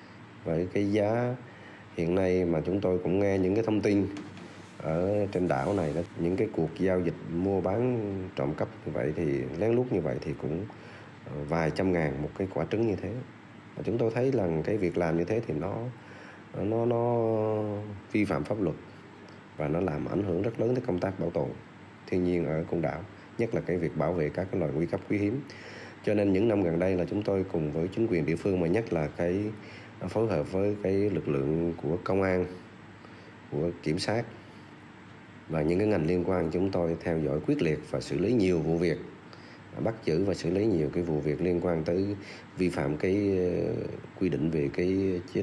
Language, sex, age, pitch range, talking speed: Vietnamese, male, 20-39, 85-105 Hz, 215 wpm